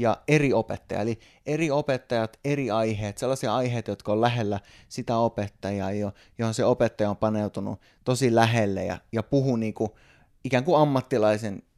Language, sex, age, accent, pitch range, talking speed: Finnish, male, 20-39, native, 105-130 Hz, 160 wpm